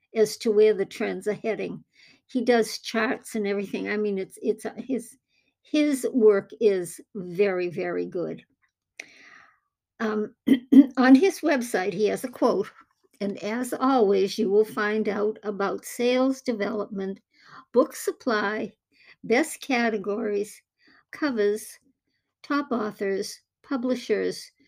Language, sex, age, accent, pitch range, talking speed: English, male, 60-79, American, 205-265 Hz, 120 wpm